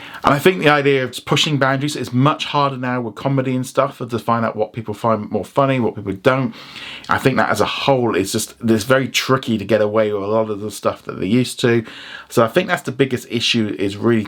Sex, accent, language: male, British, English